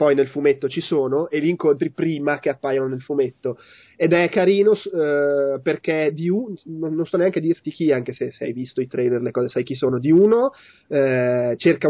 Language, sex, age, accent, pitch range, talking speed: Italian, male, 30-49, native, 135-175 Hz, 210 wpm